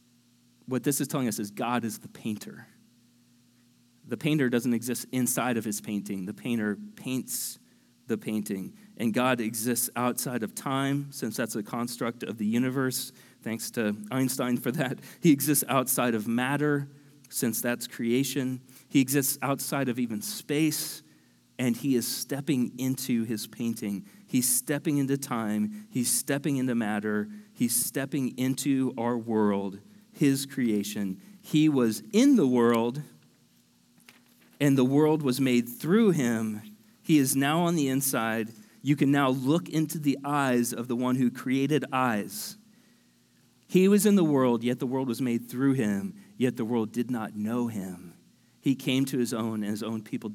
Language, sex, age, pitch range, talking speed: English, male, 30-49, 115-140 Hz, 160 wpm